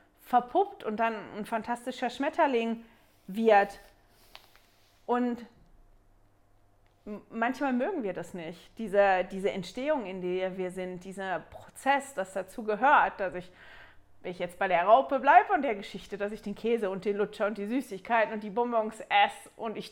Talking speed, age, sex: 160 wpm, 30-49, female